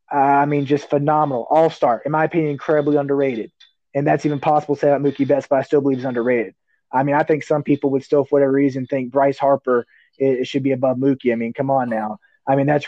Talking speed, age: 250 wpm, 20-39